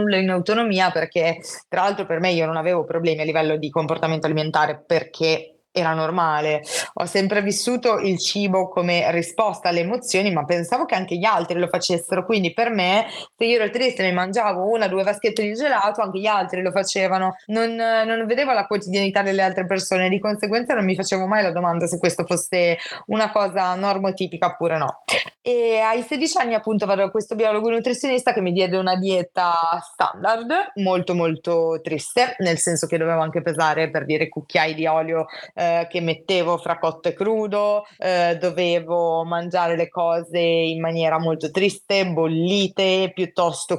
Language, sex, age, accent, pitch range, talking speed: Italian, female, 20-39, native, 165-200 Hz, 175 wpm